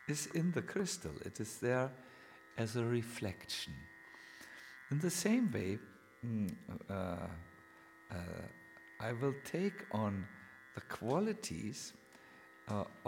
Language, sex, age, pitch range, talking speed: English, male, 50-69, 95-150 Hz, 110 wpm